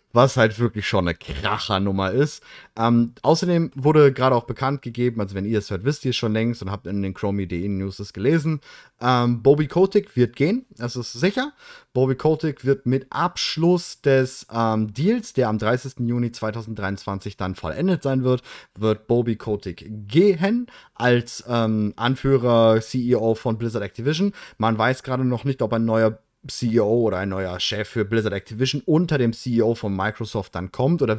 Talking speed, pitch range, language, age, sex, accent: 175 wpm, 110-145 Hz, German, 30-49, male, German